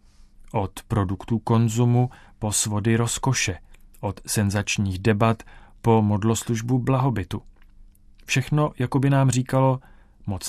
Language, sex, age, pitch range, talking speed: Czech, male, 40-59, 100-115 Hz, 105 wpm